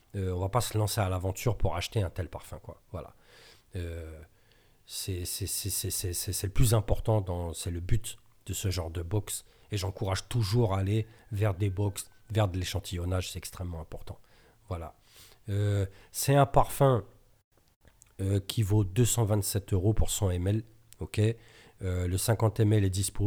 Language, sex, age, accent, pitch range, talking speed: French, male, 40-59, French, 95-115 Hz, 180 wpm